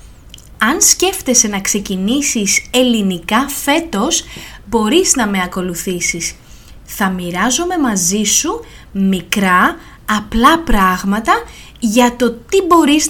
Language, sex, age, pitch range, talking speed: Greek, female, 20-39, 195-295 Hz, 95 wpm